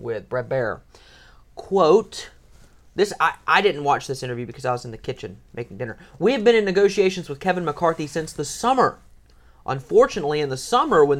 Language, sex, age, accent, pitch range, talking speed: English, male, 30-49, American, 135-200 Hz, 190 wpm